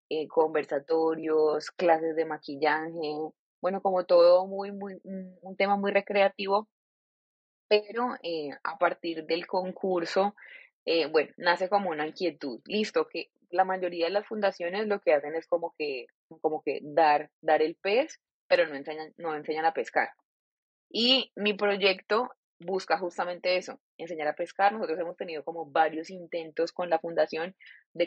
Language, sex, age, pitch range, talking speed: Spanish, female, 20-39, 160-200 Hz, 155 wpm